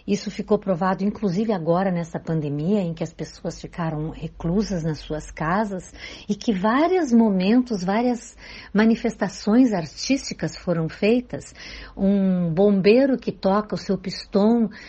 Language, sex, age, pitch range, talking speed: Portuguese, female, 60-79, 170-225 Hz, 130 wpm